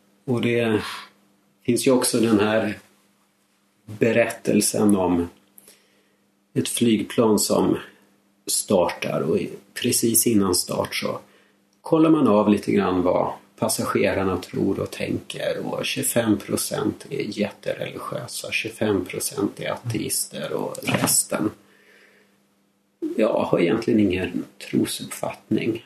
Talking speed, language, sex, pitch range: 95 wpm, English, male, 100-110 Hz